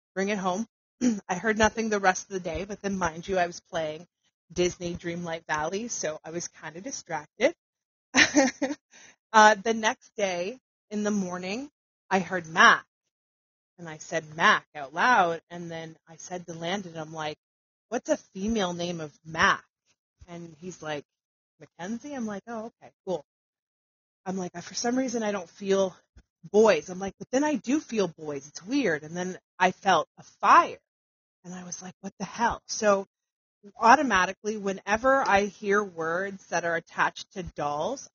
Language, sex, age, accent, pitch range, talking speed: English, female, 30-49, American, 170-210 Hz, 175 wpm